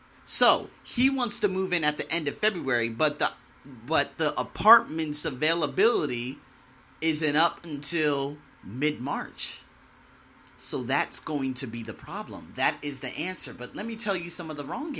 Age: 30-49